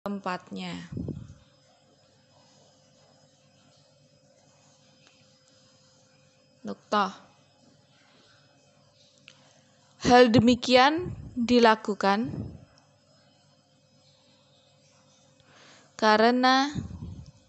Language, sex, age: Indonesian, female, 20-39